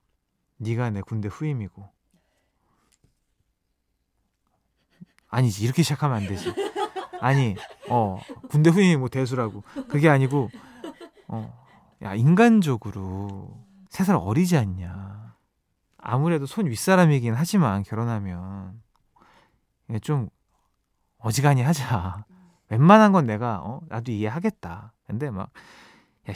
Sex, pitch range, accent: male, 110-175 Hz, native